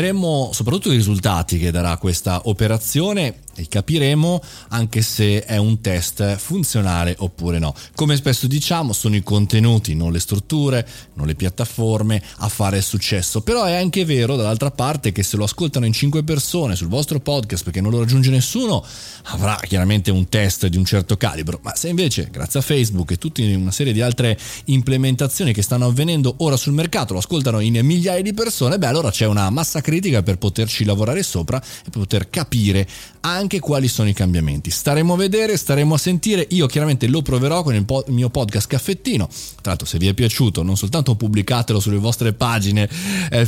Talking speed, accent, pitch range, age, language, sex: 185 wpm, native, 105-145 Hz, 30-49, Italian, male